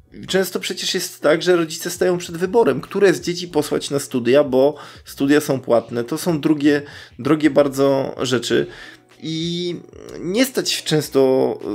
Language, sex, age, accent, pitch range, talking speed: Polish, male, 20-39, native, 130-170 Hz, 150 wpm